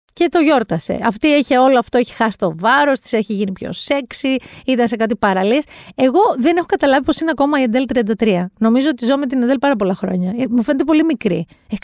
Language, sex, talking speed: Greek, female, 225 wpm